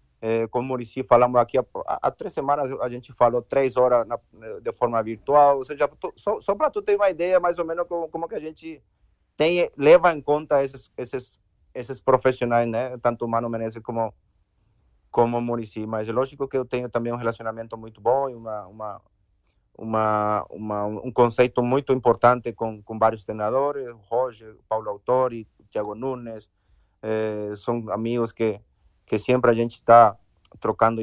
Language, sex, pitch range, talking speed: Portuguese, male, 115-135 Hz, 180 wpm